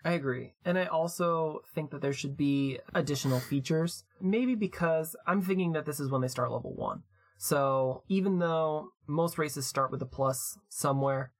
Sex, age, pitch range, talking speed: male, 20-39, 130-165 Hz, 180 wpm